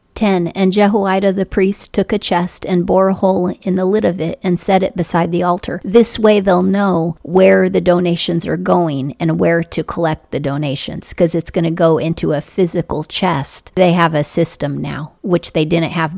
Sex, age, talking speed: female, 40-59, 210 wpm